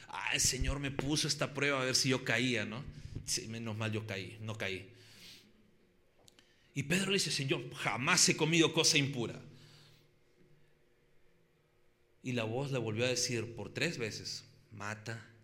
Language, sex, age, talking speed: Spanish, male, 40-59, 160 wpm